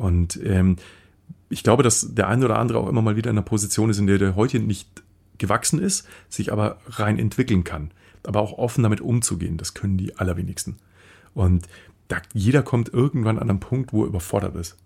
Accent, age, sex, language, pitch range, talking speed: German, 40-59, male, German, 100-130 Hz, 200 wpm